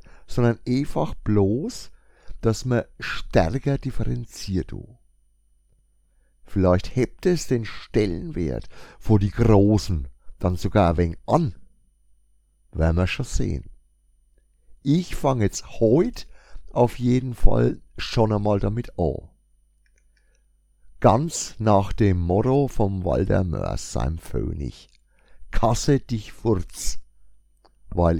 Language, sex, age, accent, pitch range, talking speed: German, male, 60-79, German, 80-115 Hz, 105 wpm